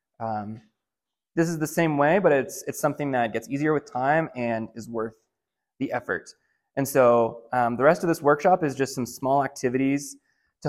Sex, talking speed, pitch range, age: male, 190 wpm, 120-155 Hz, 20-39